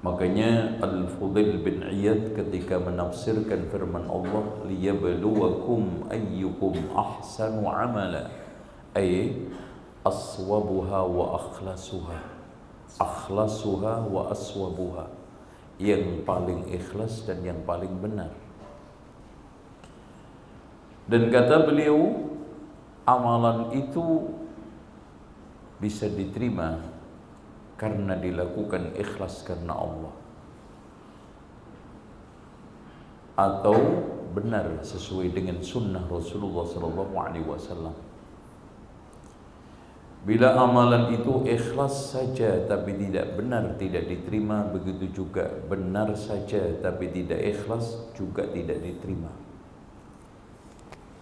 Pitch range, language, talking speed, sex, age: 90-115 Hz, Indonesian, 75 wpm, male, 50-69